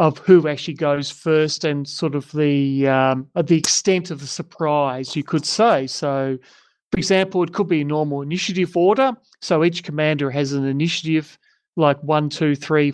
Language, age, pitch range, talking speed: English, 40-59, 150-180 Hz, 175 wpm